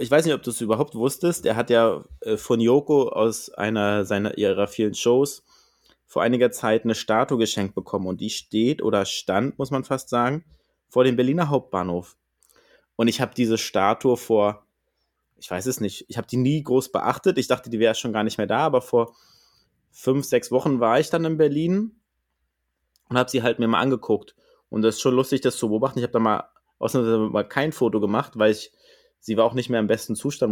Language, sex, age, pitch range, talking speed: German, male, 20-39, 110-135 Hz, 210 wpm